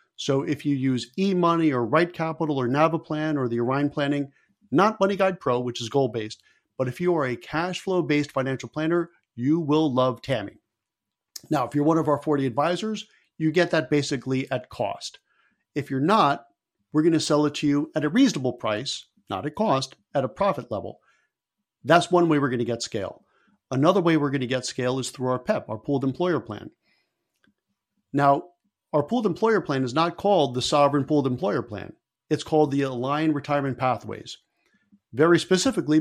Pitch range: 130-170 Hz